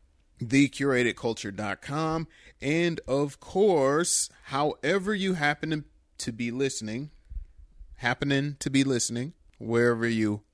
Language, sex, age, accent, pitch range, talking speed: English, male, 30-49, American, 115-145 Hz, 90 wpm